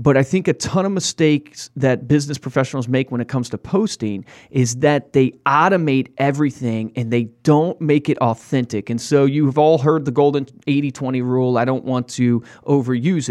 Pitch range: 125-155 Hz